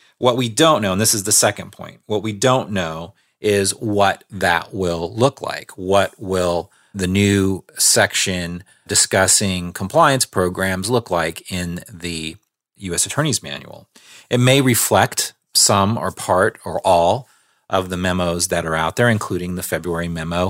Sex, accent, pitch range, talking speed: male, American, 85-110 Hz, 160 wpm